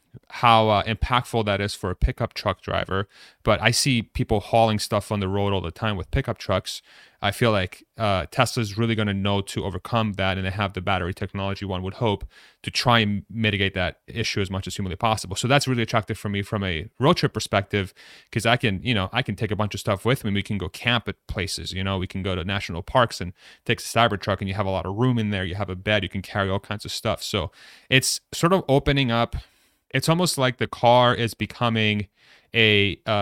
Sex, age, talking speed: male, 30-49, 245 wpm